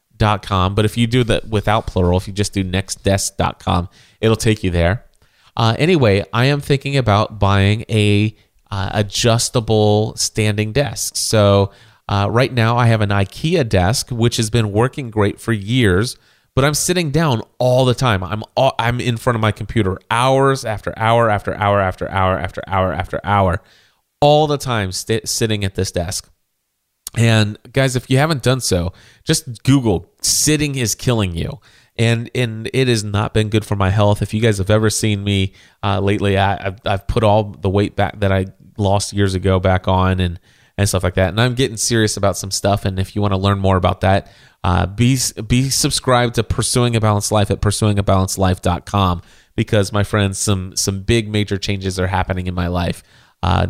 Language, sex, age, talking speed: English, male, 30-49, 190 wpm